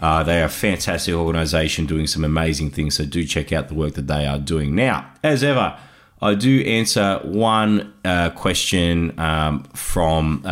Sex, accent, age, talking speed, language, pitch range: male, Australian, 30-49, 175 wpm, English, 80-100 Hz